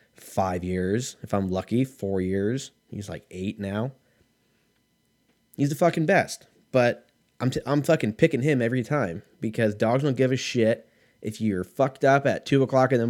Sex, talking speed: male, 180 wpm